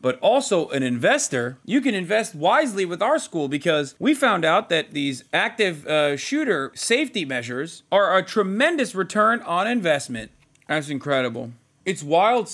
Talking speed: 155 wpm